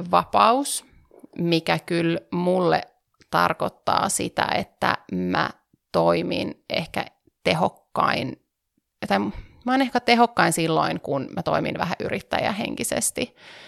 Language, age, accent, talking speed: Finnish, 30-49, native, 95 wpm